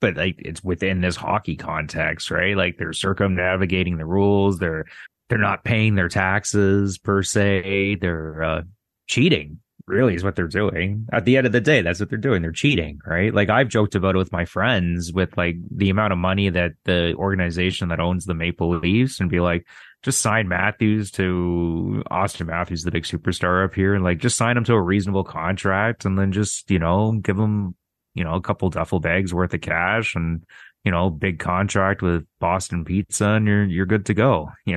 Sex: male